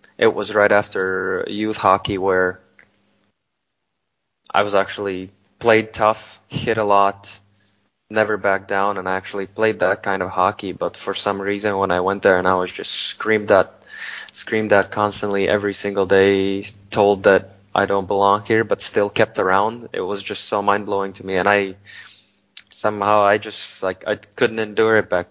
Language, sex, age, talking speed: Swedish, male, 20-39, 180 wpm